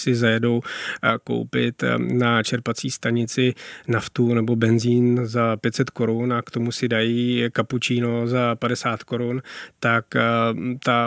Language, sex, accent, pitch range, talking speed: Czech, male, native, 115-125 Hz, 125 wpm